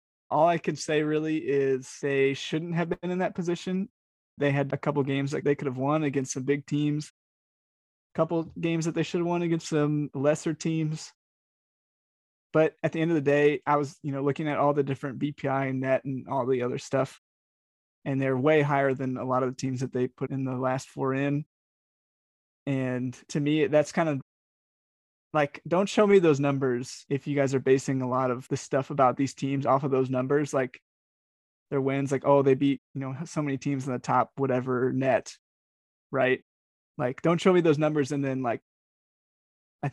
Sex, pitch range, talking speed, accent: male, 135-150 Hz, 205 wpm, American